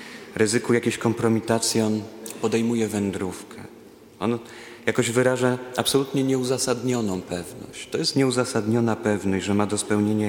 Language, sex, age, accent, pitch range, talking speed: Polish, male, 40-59, native, 100-115 Hz, 115 wpm